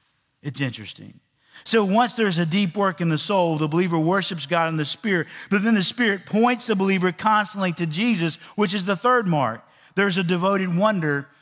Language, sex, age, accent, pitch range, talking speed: English, male, 50-69, American, 165-215 Hz, 195 wpm